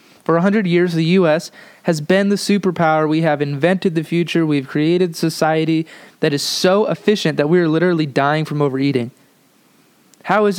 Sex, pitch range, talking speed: male, 155-185 Hz, 175 wpm